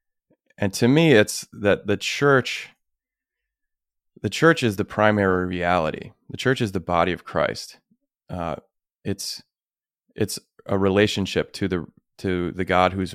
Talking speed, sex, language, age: 140 wpm, male, English, 30-49